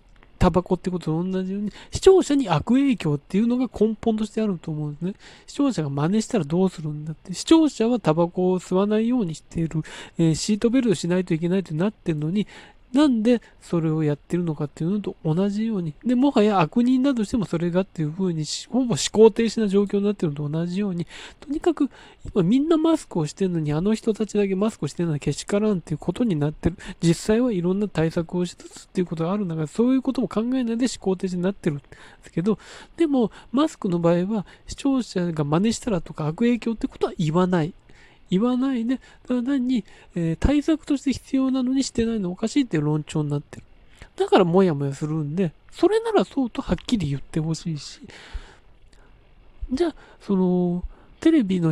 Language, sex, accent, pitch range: Japanese, male, native, 170-245 Hz